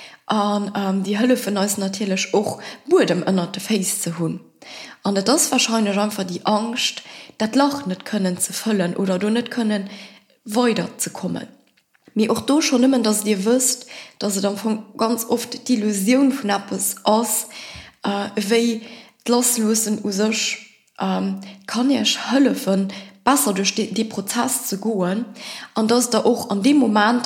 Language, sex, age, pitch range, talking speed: English, female, 20-39, 195-235 Hz, 150 wpm